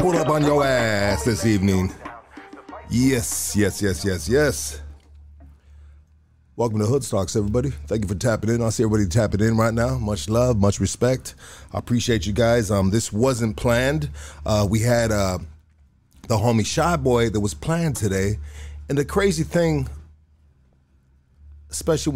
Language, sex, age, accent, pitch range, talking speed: English, male, 30-49, American, 85-120 Hz, 155 wpm